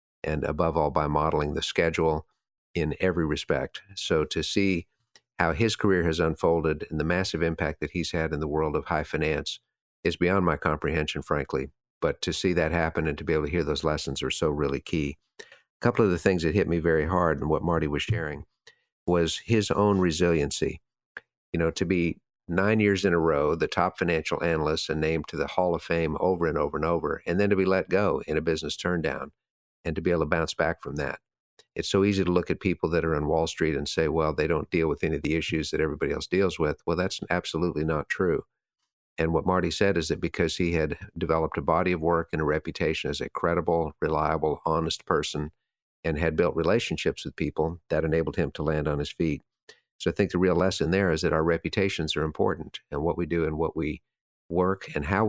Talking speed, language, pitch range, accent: 225 wpm, English, 80-90 Hz, American